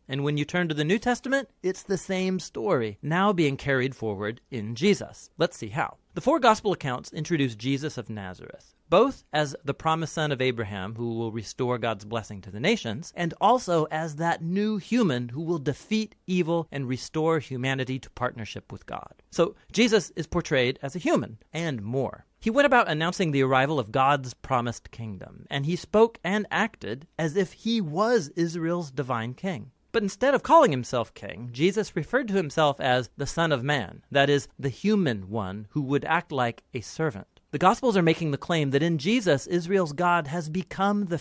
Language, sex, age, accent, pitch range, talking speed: English, male, 40-59, American, 125-180 Hz, 195 wpm